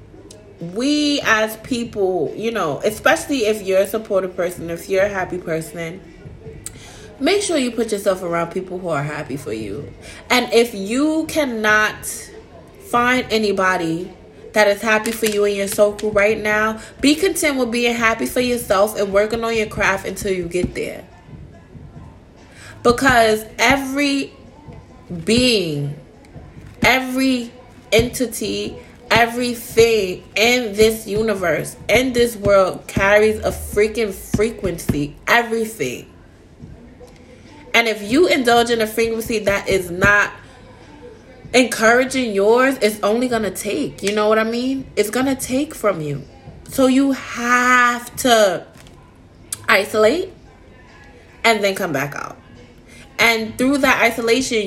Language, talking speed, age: English, 130 wpm, 20-39